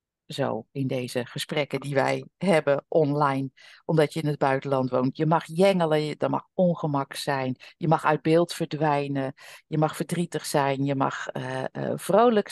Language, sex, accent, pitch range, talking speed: Dutch, female, Dutch, 140-180 Hz, 170 wpm